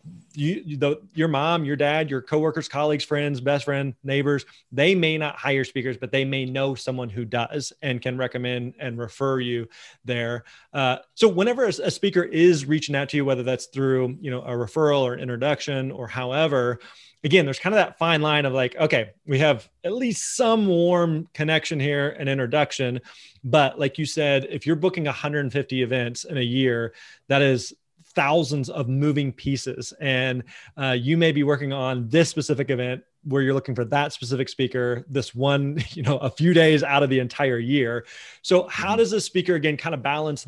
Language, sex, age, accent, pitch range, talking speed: English, male, 30-49, American, 130-155 Hz, 190 wpm